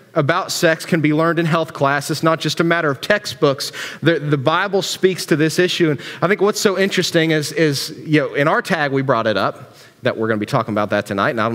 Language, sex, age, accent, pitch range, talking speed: English, male, 30-49, American, 135-170 Hz, 265 wpm